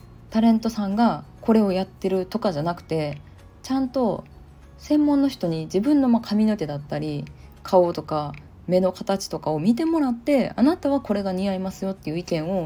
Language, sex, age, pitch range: Japanese, female, 20-39, 150-240 Hz